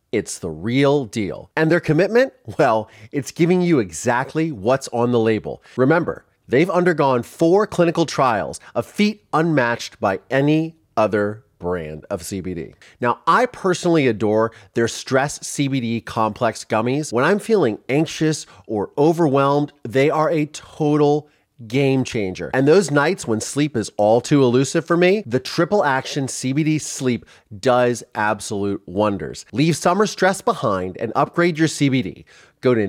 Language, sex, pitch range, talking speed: English, male, 115-165 Hz, 150 wpm